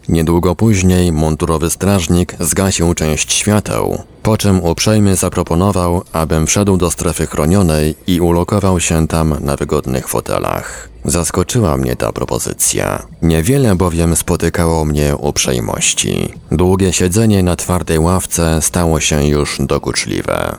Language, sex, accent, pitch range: Polish, male, native, 80-95 Hz